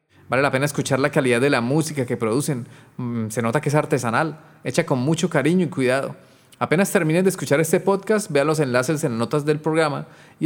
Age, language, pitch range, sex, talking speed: 30-49, Spanish, 125-160 Hz, male, 205 wpm